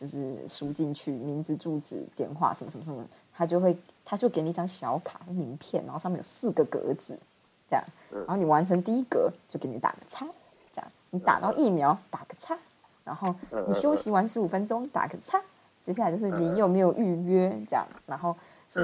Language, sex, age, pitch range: Chinese, female, 20-39, 175-270 Hz